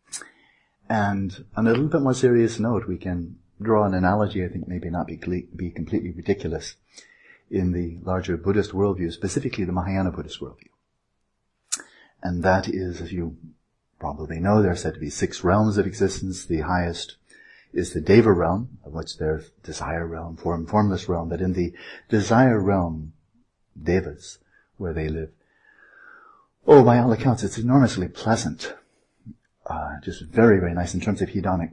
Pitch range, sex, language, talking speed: 85-105 Hz, male, English, 160 wpm